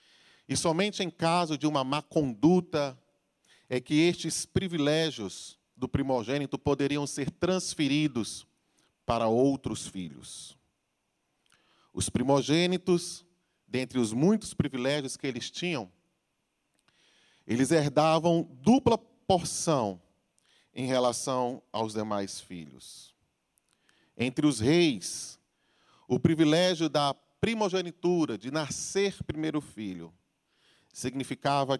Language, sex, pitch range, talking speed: Portuguese, male, 125-165 Hz, 95 wpm